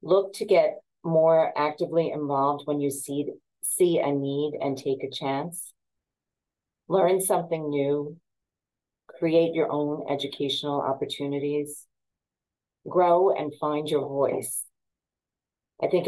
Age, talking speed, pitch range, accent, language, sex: 40-59, 115 wpm, 140-170 Hz, American, English, female